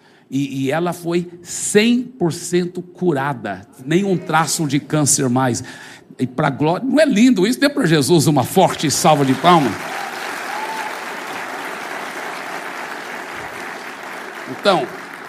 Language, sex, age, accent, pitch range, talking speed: Portuguese, male, 60-79, Brazilian, 170-260 Hz, 100 wpm